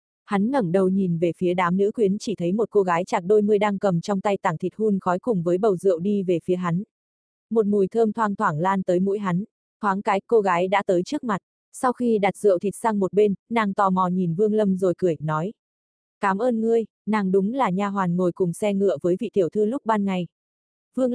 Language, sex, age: Vietnamese, female, 20-39